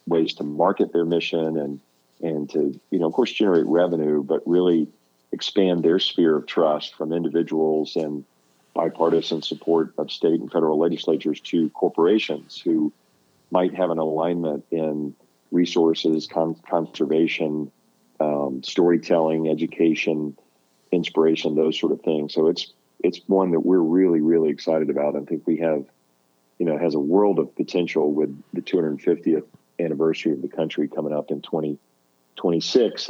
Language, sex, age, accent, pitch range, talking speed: English, male, 40-59, American, 75-80 Hz, 150 wpm